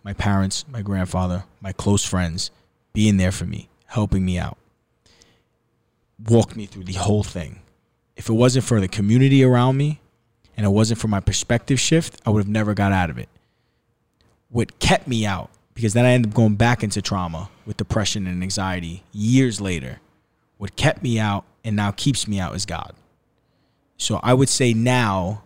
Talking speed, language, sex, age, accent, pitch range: 185 wpm, English, male, 20-39, American, 100-120 Hz